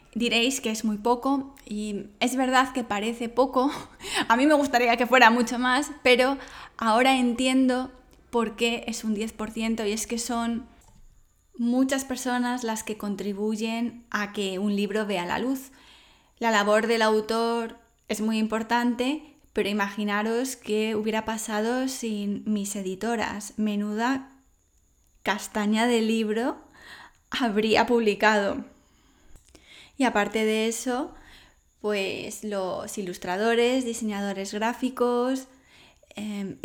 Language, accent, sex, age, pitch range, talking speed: English, Spanish, female, 10-29, 210-255 Hz, 120 wpm